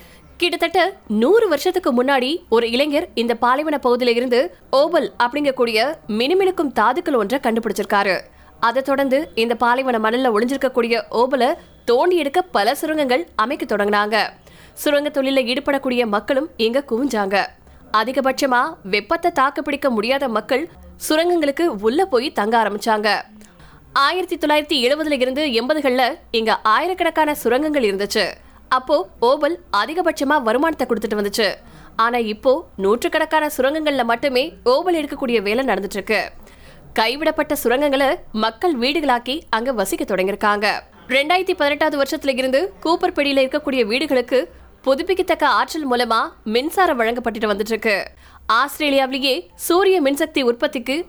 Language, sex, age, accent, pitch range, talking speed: Tamil, female, 20-39, native, 230-310 Hz, 55 wpm